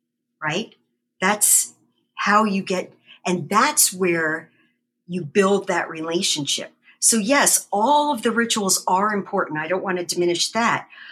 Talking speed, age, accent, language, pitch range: 140 wpm, 50-69, American, English, 155-195 Hz